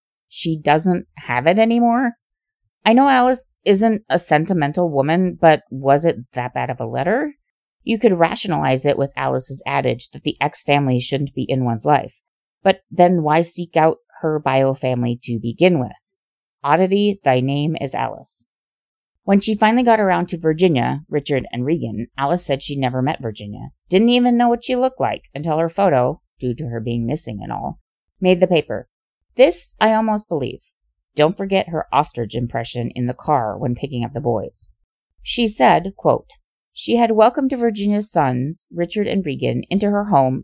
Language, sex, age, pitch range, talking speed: English, female, 30-49, 130-200 Hz, 175 wpm